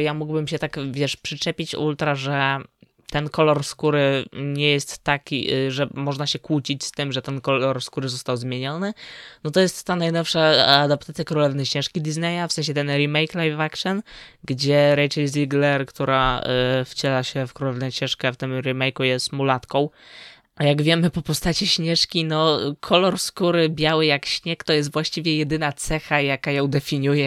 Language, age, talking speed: Polish, 20-39, 165 wpm